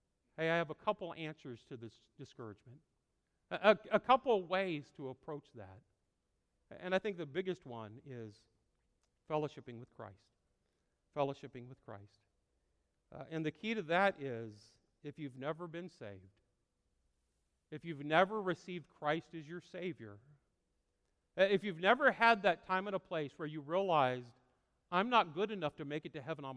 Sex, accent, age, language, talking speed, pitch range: male, American, 50-69, English, 165 wpm, 130-200 Hz